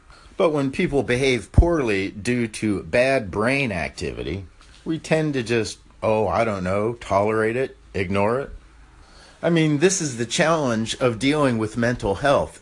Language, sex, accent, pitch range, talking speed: English, male, American, 90-130 Hz, 155 wpm